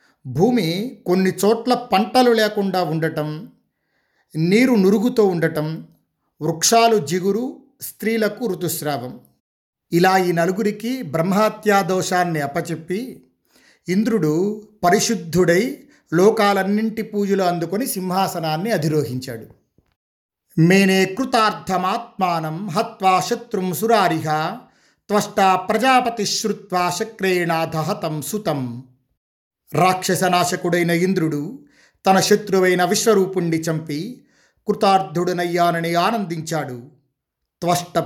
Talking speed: 65 wpm